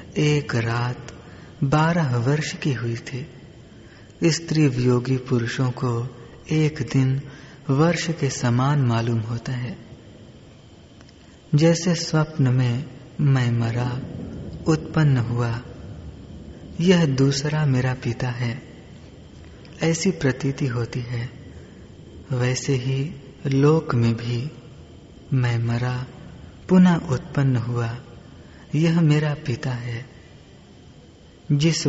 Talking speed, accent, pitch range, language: 95 wpm, Indian, 120-150 Hz, English